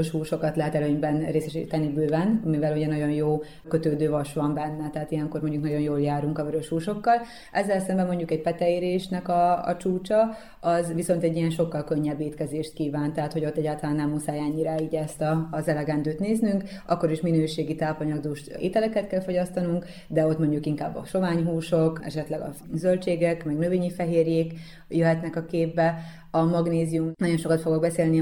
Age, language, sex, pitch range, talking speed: 30-49, Hungarian, female, 155-170 Hz, 165 wpm